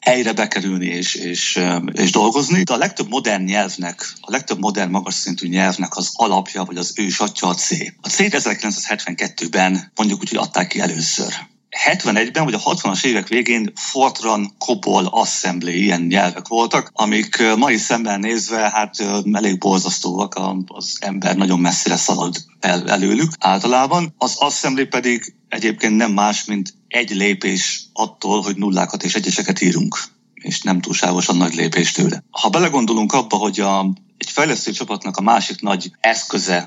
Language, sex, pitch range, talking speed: Hungarian, male, 95-110 Hz, 150 wpm